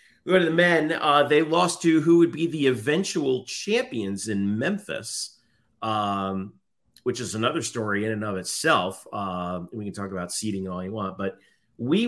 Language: English